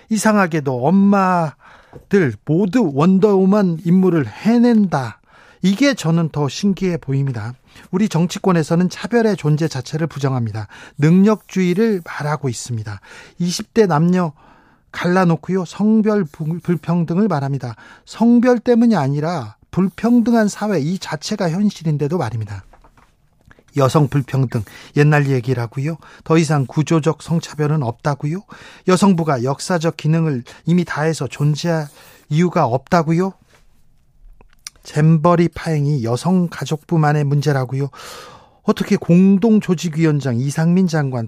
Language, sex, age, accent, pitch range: Korean, male, 40-59, native, 140-185 Hz